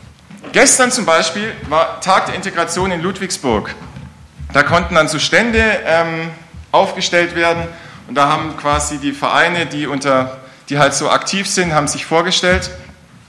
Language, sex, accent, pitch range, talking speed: German, male, German, 145-195 Hz, 150 wpm